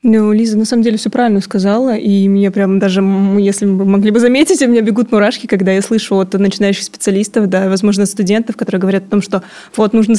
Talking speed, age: 220 wpm, 20-39